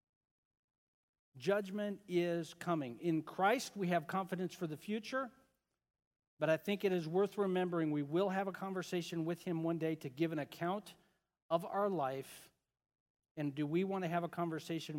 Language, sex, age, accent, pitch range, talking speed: English, male, 50-69, American, 140-175 Hz, 170 wpm